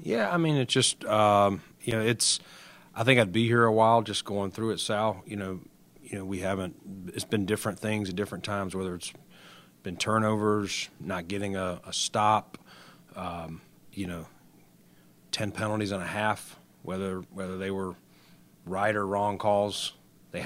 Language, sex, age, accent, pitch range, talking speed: English, male, 40-59, American, 95-110 Hz, 175 wpm